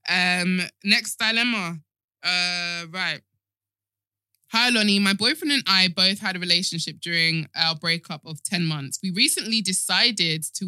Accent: British